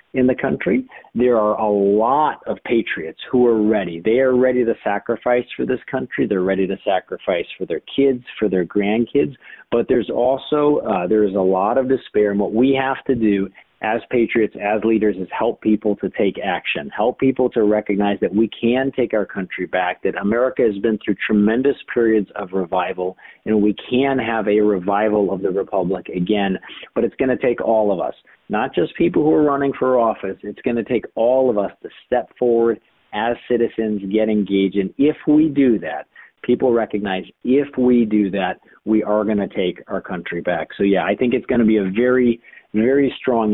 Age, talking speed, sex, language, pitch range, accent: 50-69, 200 wpm, male, English, 100-125 Hz, American